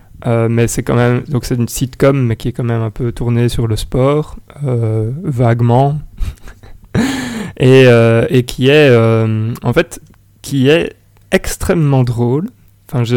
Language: French